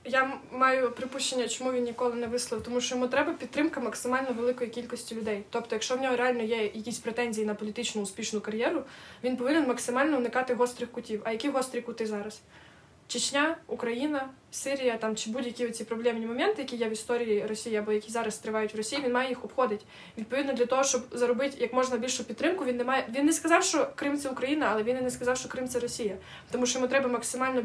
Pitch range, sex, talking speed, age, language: 230-270 Hz, female, 215 wpm, 20-39, Ukrainian